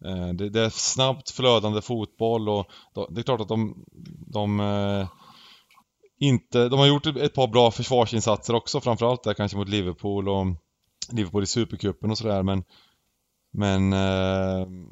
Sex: male